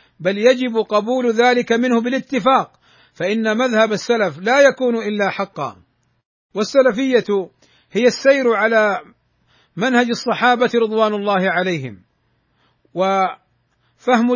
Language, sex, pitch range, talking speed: Arabic, male, 200-245 Hz, 95 wpm